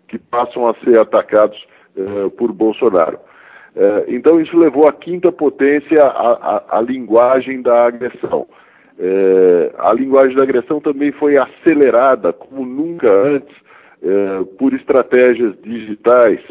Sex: male